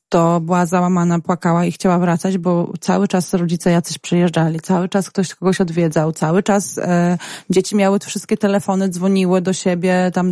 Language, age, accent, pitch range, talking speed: Polish, 20-39, native, 180-200 Hz, 170 wpm